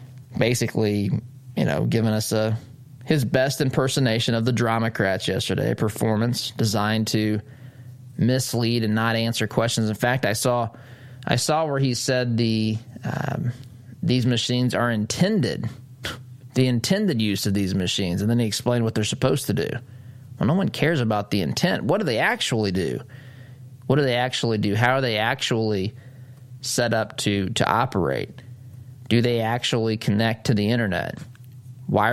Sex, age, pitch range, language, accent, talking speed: male, 20-39, 115-130 Hz, English, American, 160 wpm